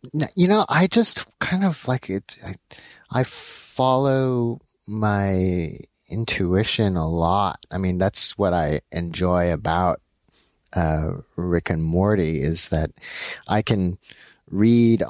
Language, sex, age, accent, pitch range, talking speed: English, male, 30-49, American, 85-110 Hz, 125 wpm